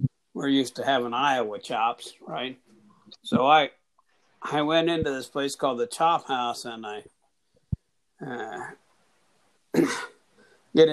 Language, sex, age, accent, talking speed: English, male, 60-79, American, 120 wpm